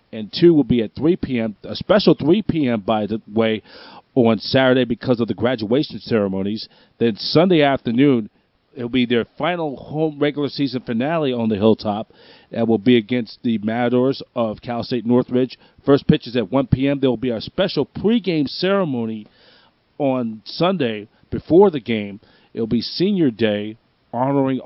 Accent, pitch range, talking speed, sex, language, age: American, 120-150 Hz, 170 wpm, male, English, 40-59